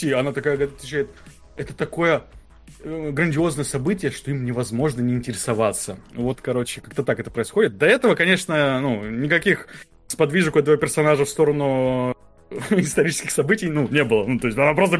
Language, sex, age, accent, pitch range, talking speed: Russian, male, 20-39, native, 135-180 Hz, 155 wpm